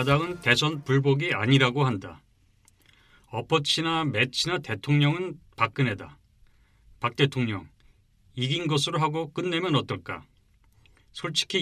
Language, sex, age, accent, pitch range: Korean, male, 40-59, native, 115-165 Hz